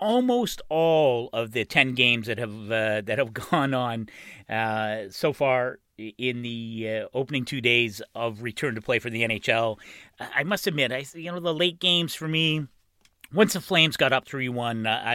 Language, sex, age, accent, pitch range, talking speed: English, male, 40-59, American, 110-155 Hz, 180 wpm